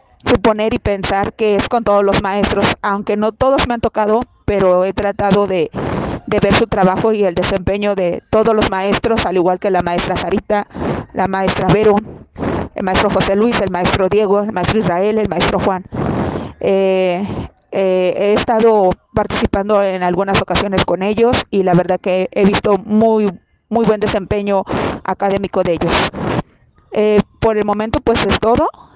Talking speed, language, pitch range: 170 wpm, Spanish, 190-225 Hz